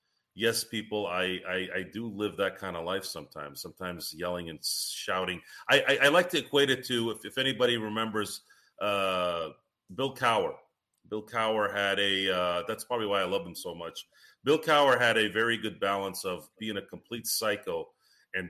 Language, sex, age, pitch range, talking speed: English, male, 40-59, 95-120 Hz, 185 wpm